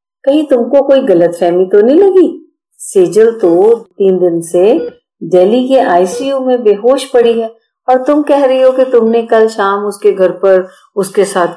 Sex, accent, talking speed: female, native, 170 wpm